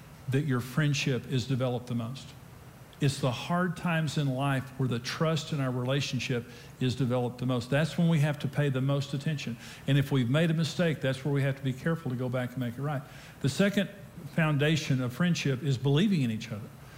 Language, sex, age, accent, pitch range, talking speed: English, male, 50-69, American, 135-165 Hz, 220 wpm